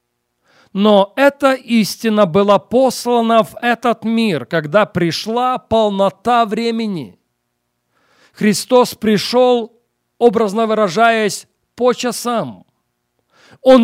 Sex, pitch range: male, 155-225 Hz